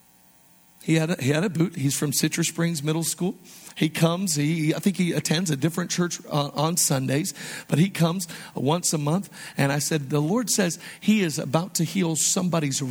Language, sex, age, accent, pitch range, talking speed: English, male, 50-69, American, 150-195 Hz, 205 wpm